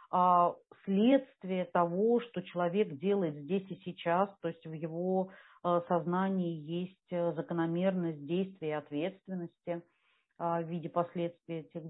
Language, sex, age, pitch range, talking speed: Russian, female, 40-59, 175-220 Hz, 115 wpm